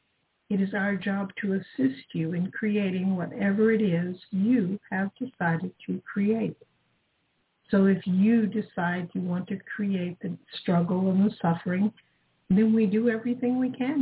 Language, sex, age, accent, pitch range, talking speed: English, female, 60-79, American, 175-215 Hz, 155 wpm